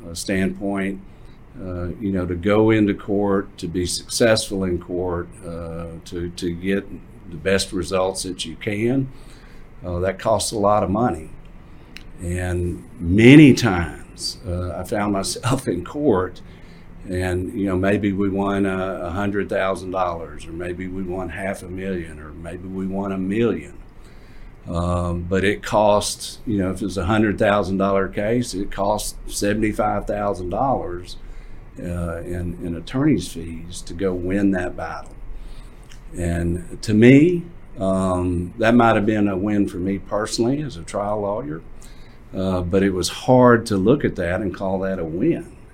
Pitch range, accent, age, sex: 90-105 Hz, American, 50-69, male